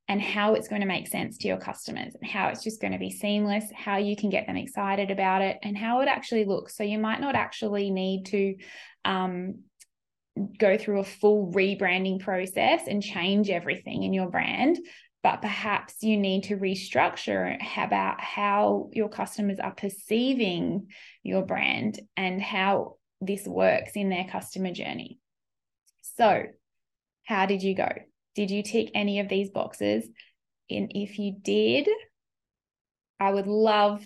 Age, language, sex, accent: 10-29, English, female, Australian